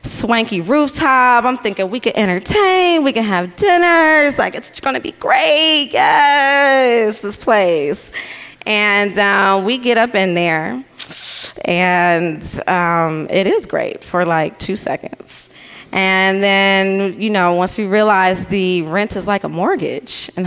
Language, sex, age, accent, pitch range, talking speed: English, female, 20-39, American, 180-230 Hz, 145 wpm